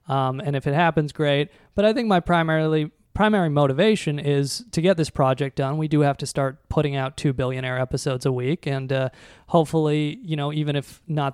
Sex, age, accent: male, 20-39, American